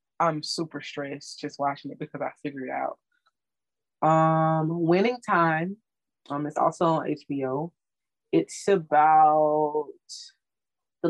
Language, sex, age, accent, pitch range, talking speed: English, female, 20-39, American, 140-170 Hz, 120 wpm